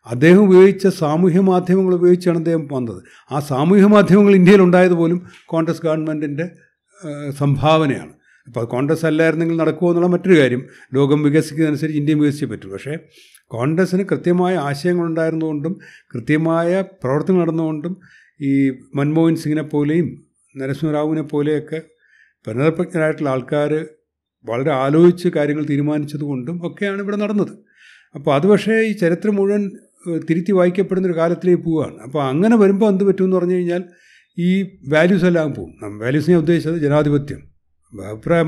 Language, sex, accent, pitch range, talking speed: Malayalam, male, native, 140-180 Hz, 115 wpm